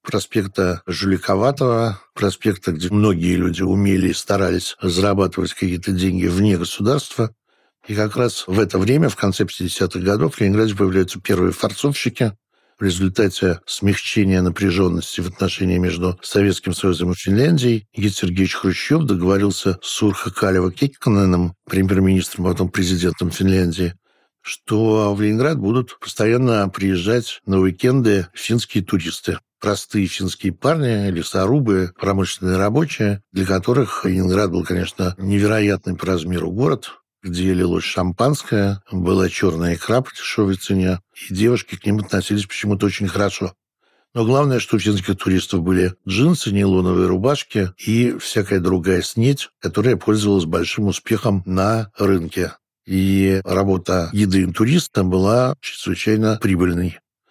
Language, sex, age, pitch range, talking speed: Russian, male, 60-79, 90-105 Hz, 125 wpm